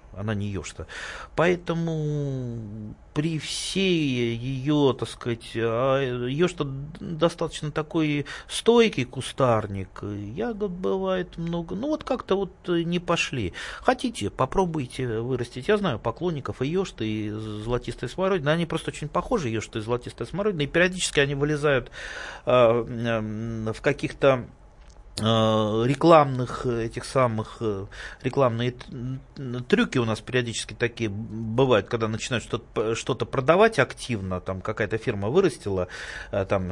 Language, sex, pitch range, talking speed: Russian, male, 115-165 Hz, 115 wpm